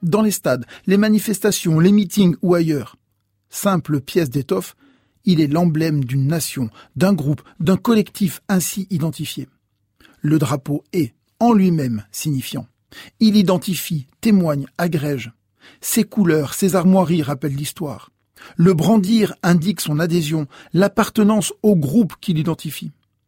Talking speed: 125 wpm